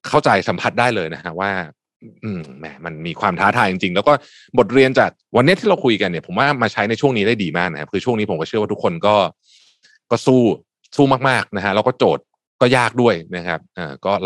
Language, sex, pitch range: Thai, male, 95-140 Hz